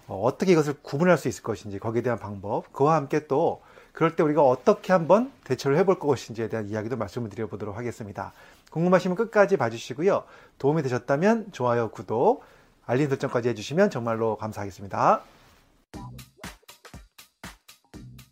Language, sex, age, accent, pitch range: Korean, male, 30-49, native, 115-175 Hz